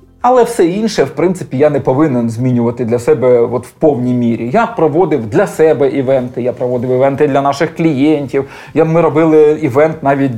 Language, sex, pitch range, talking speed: Ukrainian, male, 125-155 Hz, 175 wpm